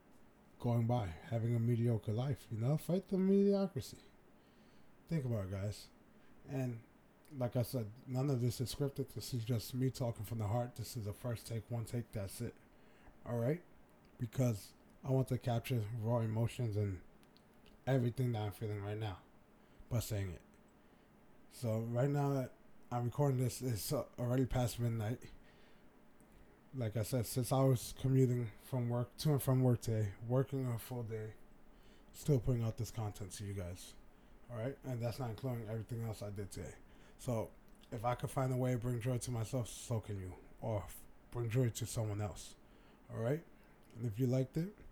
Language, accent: English, American